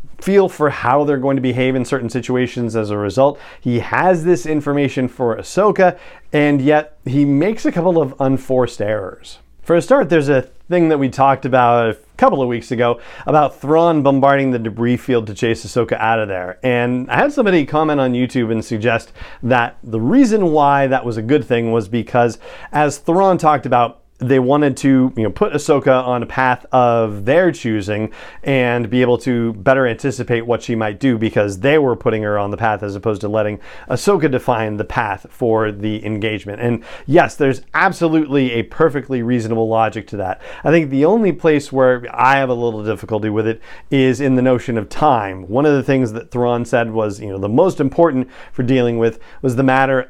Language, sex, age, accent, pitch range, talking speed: English, male, 40-59, American, 115-145 Hz, 200 wpm